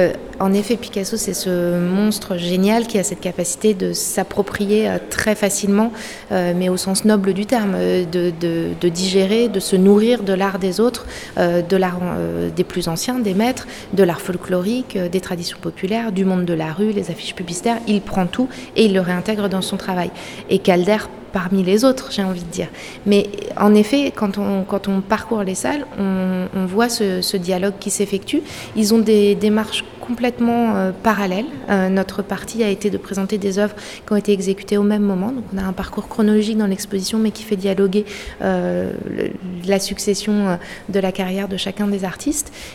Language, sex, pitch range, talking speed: French, female, 185-215 Hz, 190 wpm